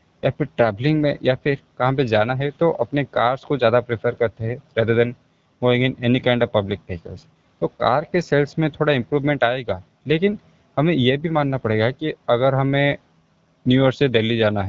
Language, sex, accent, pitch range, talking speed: Hindi, male, native, 120-145 Hz, 175 wpm